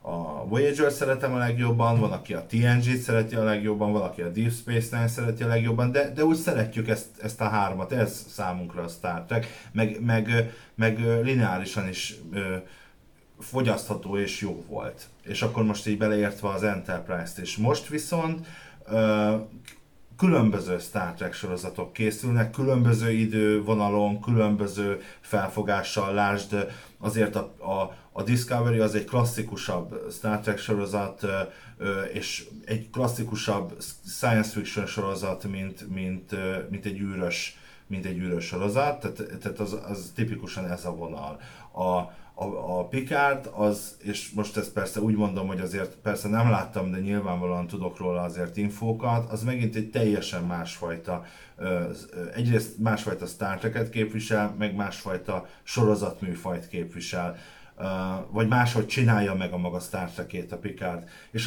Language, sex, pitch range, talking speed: Hungarian, male, 95-115 Hz, 140 wpm